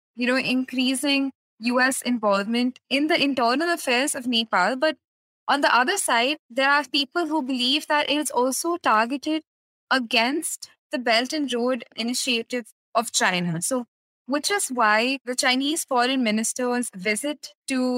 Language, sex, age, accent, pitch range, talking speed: English, female, 20-39, Indian, 230-280 Hz, 145 wpm